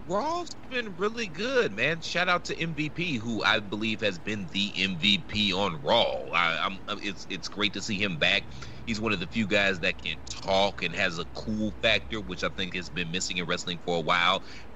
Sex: male